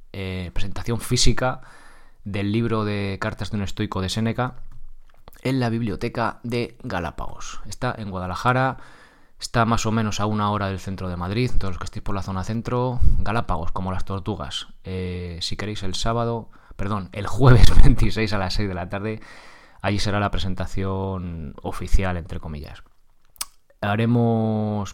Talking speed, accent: 160 wpm, Spanish